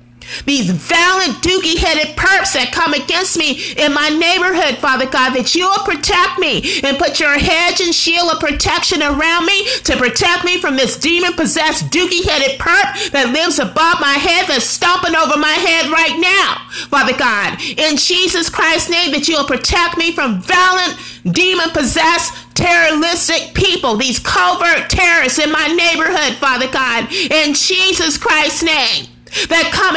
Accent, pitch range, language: American, 270-340 Hz, English